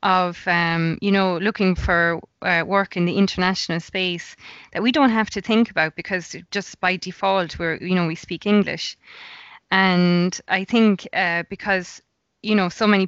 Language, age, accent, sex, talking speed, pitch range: English, 20-39, Irish, female, 175 wpm, 170-200 Hz